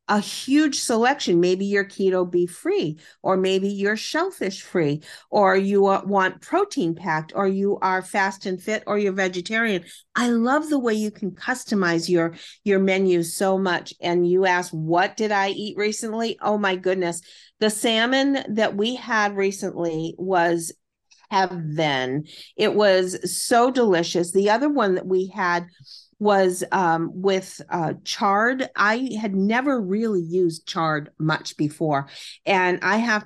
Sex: female